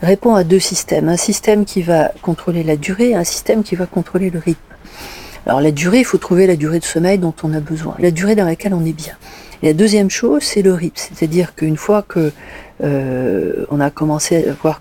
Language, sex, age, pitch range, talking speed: French, female, 40-59, 155-190 Hz, 230 wpm